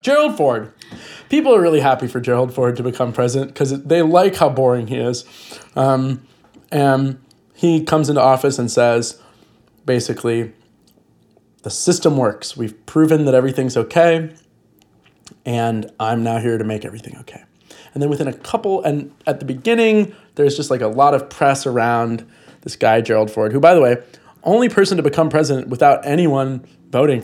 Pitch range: 125-160 Hz